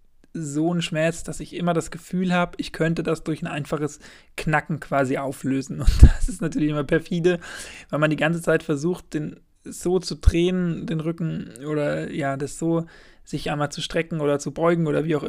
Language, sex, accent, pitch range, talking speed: German, male, German, 145-170 Hz, 195 wpm